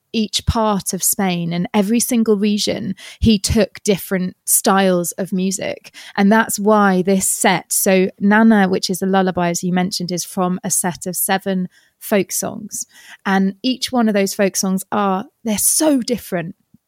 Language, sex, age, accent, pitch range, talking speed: English, female, 20-39, British, 185-215 Hz, 165 wpm